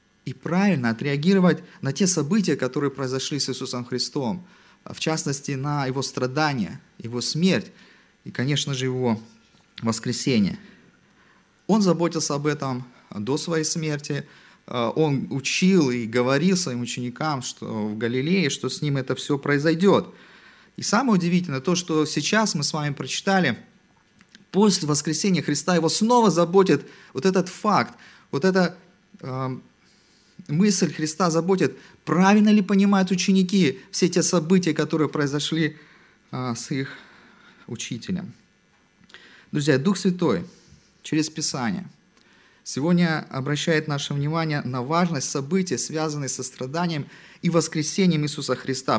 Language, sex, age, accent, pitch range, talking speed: Russian, male, 30-49, native, 140-185 Hz, 125 wpm